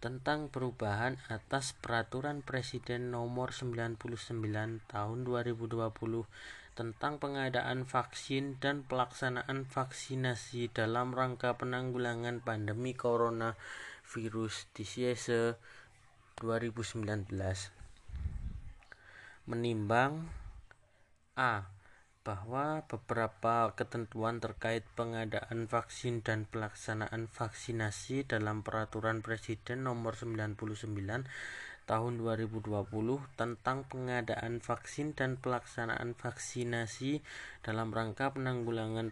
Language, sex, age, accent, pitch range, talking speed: Indonesian, male, 20-39, native, 110-125 Hz, 75 wpm